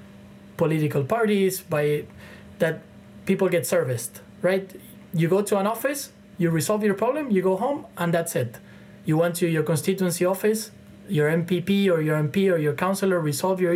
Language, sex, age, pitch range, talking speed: English, male, 20-39, 140-180 Hz, 170 wpm